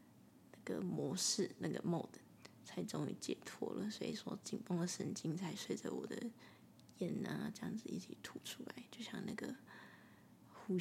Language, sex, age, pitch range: Chinese, female, 20-39, 180-235 Hz